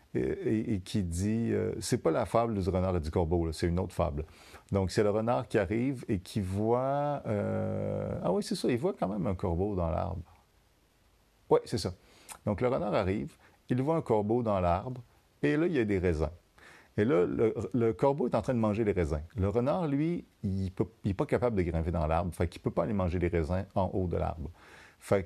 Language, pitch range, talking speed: French, 90-125 Hz, 235 wpm